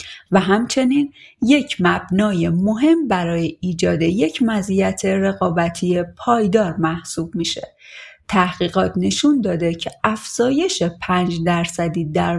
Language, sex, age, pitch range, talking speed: Persian, female, 30-49, 175-220 Hz, 100 wpm